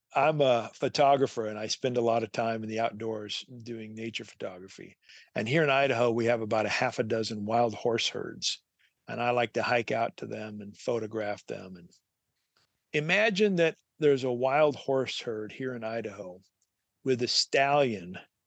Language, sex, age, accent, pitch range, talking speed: English, male, 50-69, American, 115-145 Hz, 180 wpm